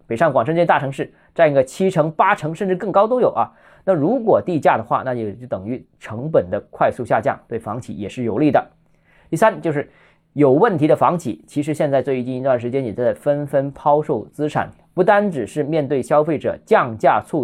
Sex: male